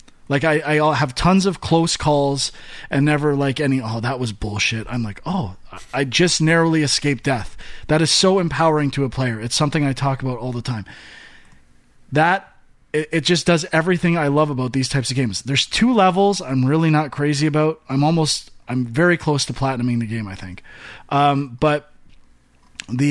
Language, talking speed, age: English, 190 wpm, 20-39